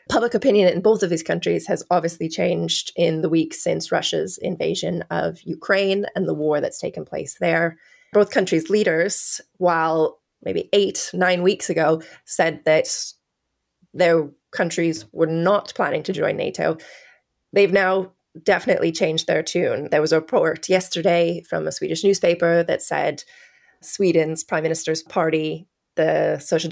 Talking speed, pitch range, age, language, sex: 150 wpm, 160-195 Hz, 20-39, English, female